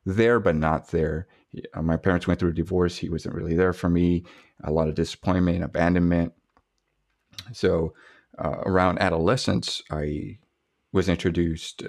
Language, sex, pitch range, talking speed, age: English, male, 80-95 Hz, 145 wpm, 30-49